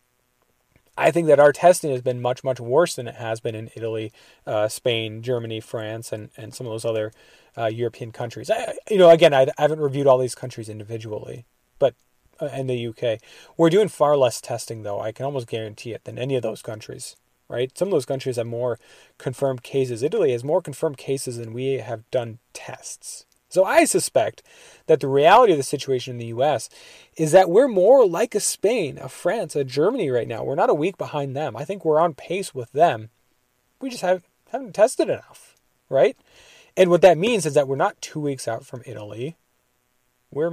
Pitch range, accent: 120-170 Hz, American